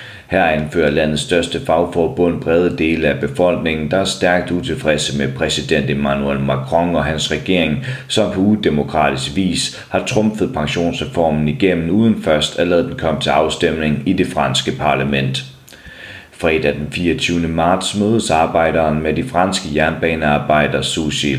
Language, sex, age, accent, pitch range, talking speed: Danish, male, 30-49, native, 70-85 Hz, 145 wpm